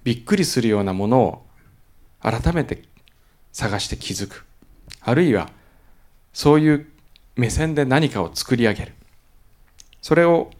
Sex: male